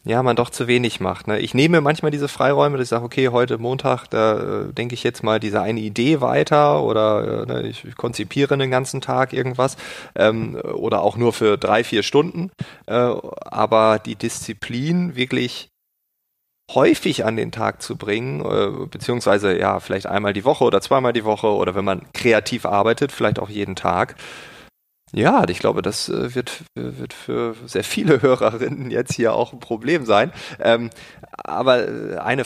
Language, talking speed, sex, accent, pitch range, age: German, 165 wpm, male, German, 110-140 Hz, 30-49